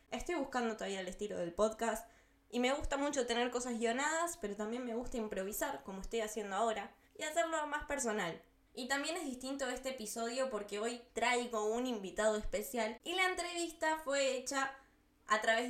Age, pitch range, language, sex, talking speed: 10-29, 215-280 Hz, Spanish, female, 175 wpm